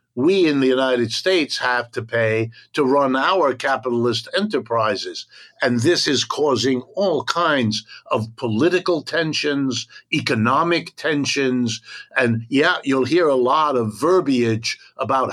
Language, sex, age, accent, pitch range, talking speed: English, male, 60-79, American, 120-150 Hz, 130 wpm